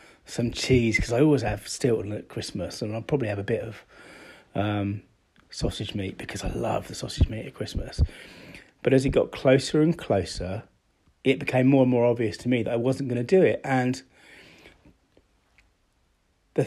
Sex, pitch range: male, 105-130 Hz